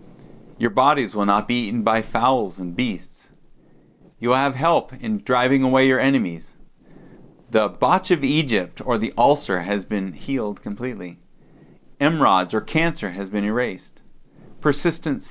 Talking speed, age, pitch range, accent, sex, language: 145 wpm, 40-59, 105-140 Hz, American, male, English